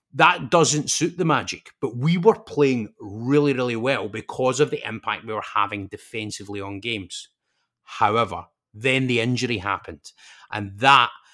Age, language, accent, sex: 30-49, English, British, male